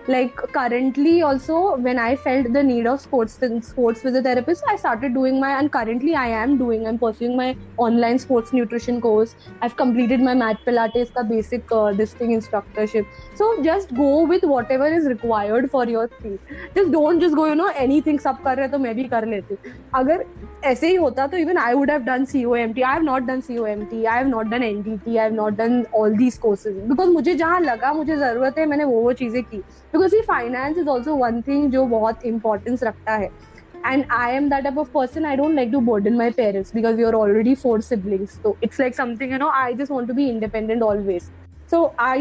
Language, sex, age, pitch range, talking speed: Hindi, female, 20-39, 230-285 Hz, 230 wpm